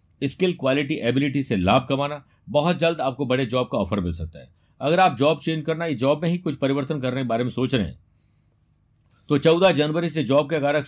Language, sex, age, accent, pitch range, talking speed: Hindi, male, 50-69, native, 110-155 Hz, 225 wpm